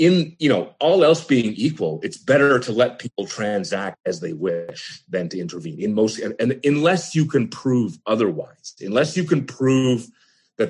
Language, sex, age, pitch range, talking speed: English, male, 30-49, 95-135 Hz, 175 wpm